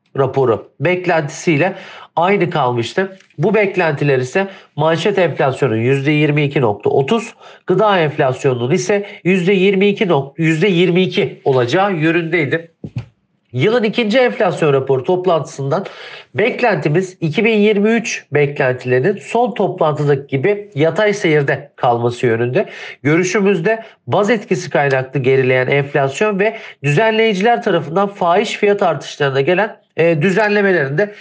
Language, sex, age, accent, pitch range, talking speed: Turkish, male, 50-69, native, 145-205 Hz, 85 wpm